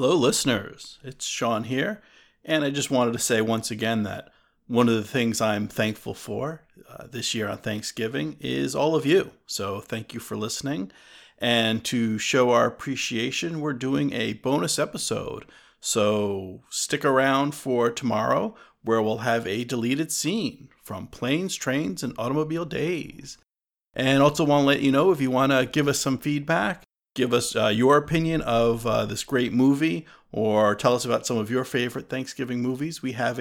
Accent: American